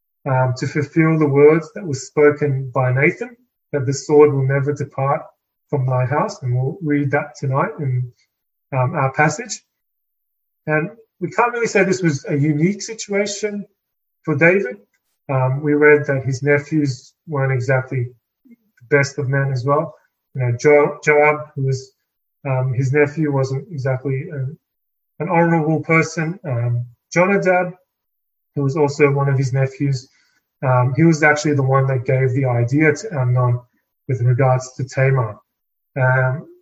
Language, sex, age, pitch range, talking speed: English, male, 30-49, 130-155 Hz, 145 wpm